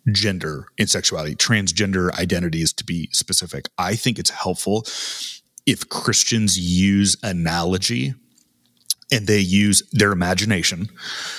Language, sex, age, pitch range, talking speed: English, male, 30-49, 95-115 Hz, 110 wpm